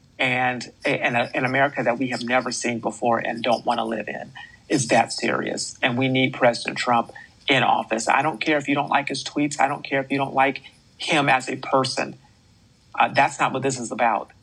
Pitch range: 120-140 Hz